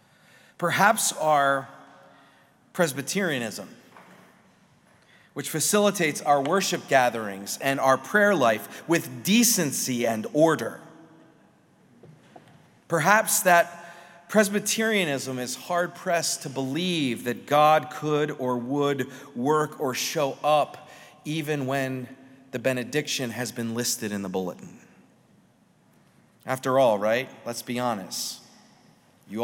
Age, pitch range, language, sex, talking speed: 40-59, 125-170 Hz, English, male, 100 wpm